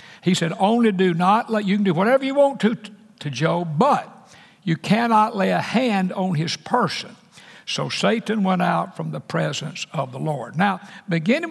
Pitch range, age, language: 165-210 Hz, 60-79, English